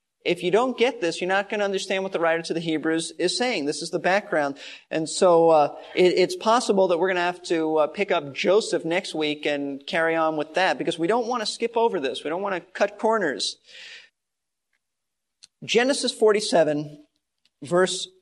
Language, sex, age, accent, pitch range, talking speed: English, male, 40-59, American, 155-210 Hz, 205 wpm